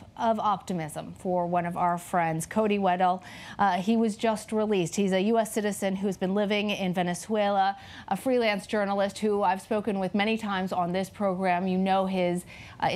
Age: 40-59